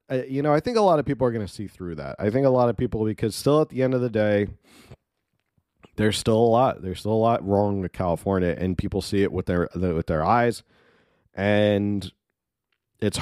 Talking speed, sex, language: 230 wpm, male, English